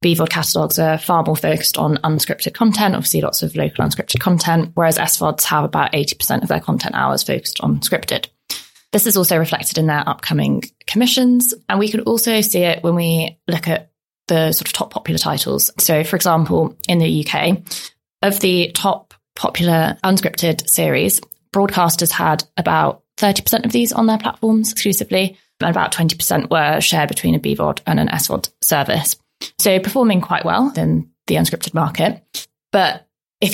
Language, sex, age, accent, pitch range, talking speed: English, female, 20-39, British, 155-200 Hz, 170 wpm